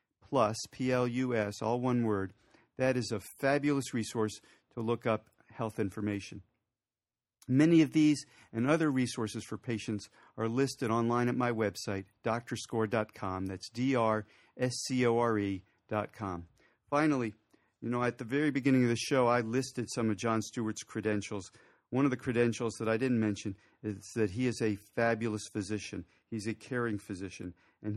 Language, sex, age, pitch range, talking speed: English, male, 50-69, 110-125 Hz, 150 wpm